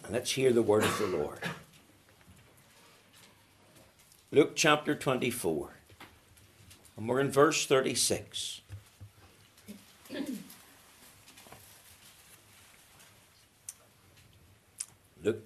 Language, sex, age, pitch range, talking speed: English, male, 60-79, 105-140 Hz, 65 wpm